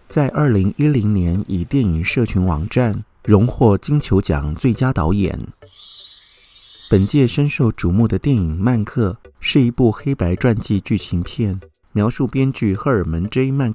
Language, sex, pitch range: Chinese, male, 90-130 Hz